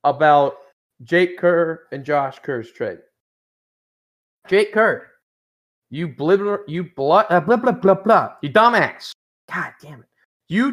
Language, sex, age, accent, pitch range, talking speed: English, male, 30-49, American, 165-235 Hz, 145 wpm